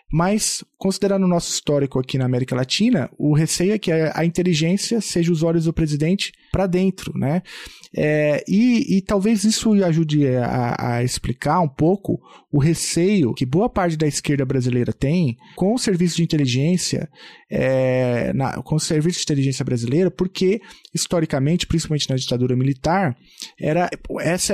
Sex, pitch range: male, 135-185 Hz